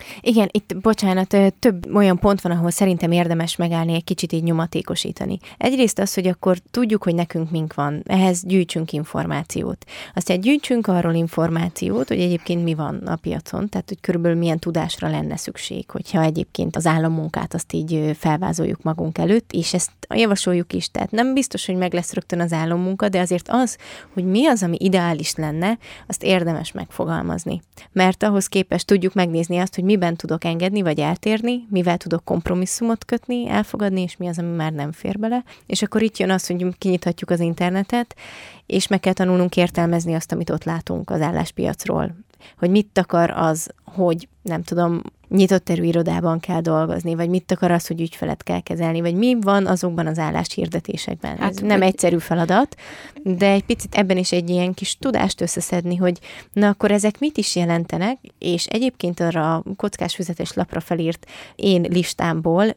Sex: female